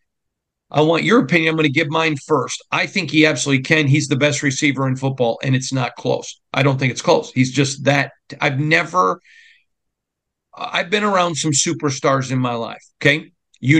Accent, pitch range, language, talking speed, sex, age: American, 125-150 Hz, English, 195 wpm, male, 50-69